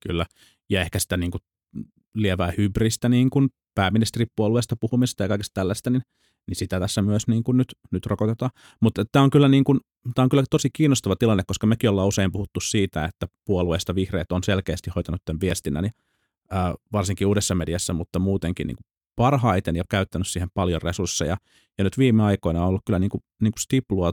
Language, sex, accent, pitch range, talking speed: Finnish, male, native, 90-110 Hz, 175 wpm